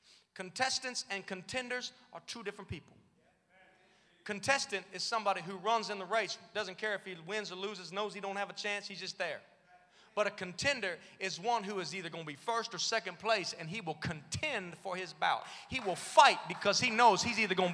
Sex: male